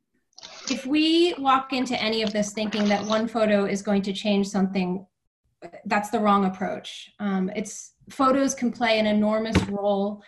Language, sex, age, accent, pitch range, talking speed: English, female, 30-49, American, 195-235 Hz, 165 wpm